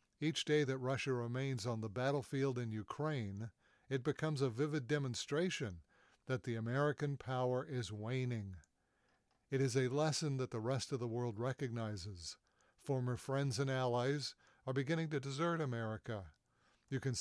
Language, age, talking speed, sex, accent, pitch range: English, 60-79, 150 wpm, male, American, 115-140 Hz